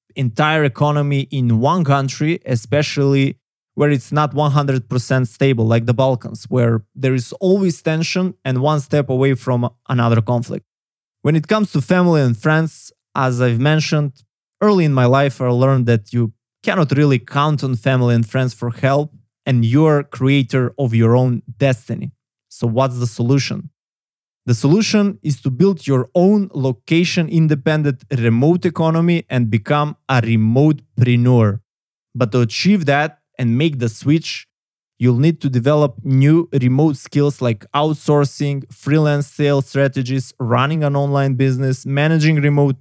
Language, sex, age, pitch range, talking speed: English, male, 20-39, 125-150 Hz, 150 wpm